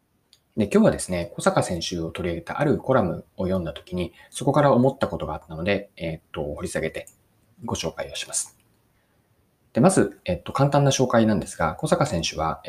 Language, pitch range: Japanese, 90-140 Hz